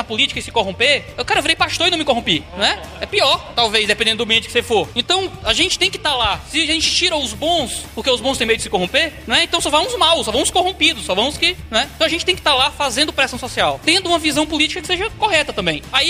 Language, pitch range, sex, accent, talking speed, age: Portuguese, 235-310 Hz, male, Brazilian, 285 wpm, 20-39